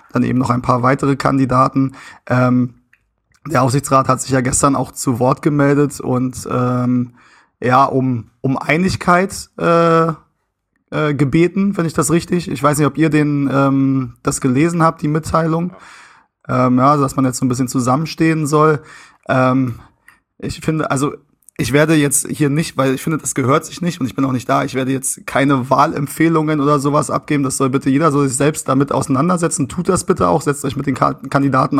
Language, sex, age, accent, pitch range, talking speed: German, male, 20-39, German, 135-155 Hz, 190 wpm